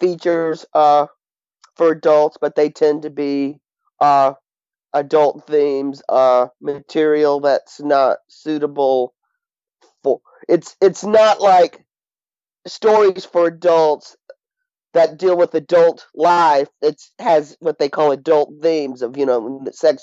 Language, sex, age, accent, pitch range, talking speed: English, male, 40-59, American, 145-175 Hz, 125 wpm